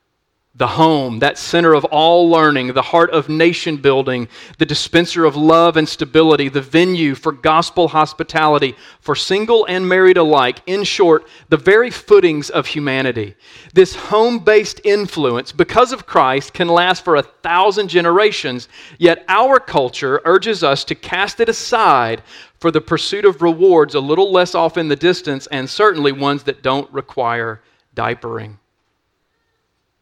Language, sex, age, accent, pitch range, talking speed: English, male, 40-59, American, 130-170 Hz, 150 wpm